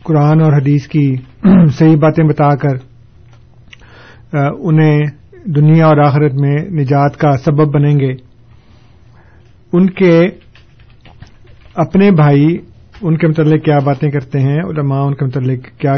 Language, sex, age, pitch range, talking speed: Urdu, male, 50-69, 120-155 Hz, 130 wpm